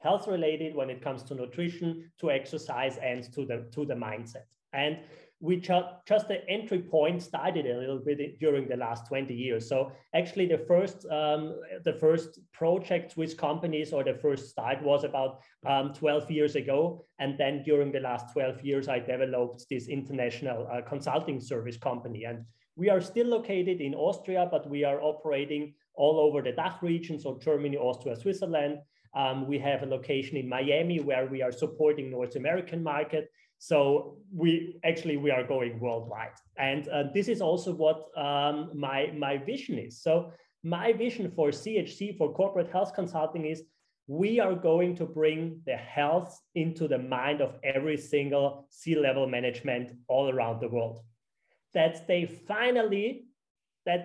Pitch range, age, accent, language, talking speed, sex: 135-175 Hz, 30-49, German, English, 170 wpm, male